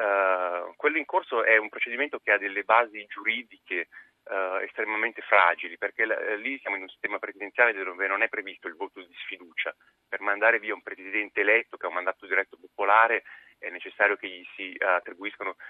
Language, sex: Italian, male